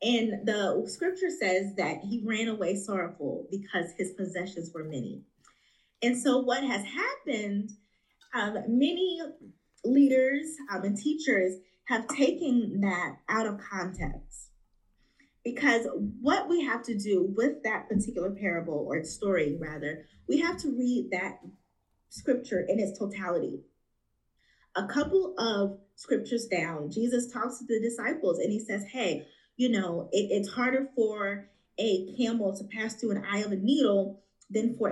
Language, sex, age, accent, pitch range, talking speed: English, female, 20-39, American, 190-250 Hz, 145 wpm